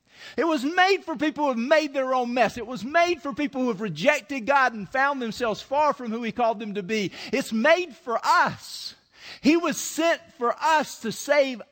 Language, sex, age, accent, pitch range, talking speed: English, male, 50-69, American, 175-245 Hz, 215 wpm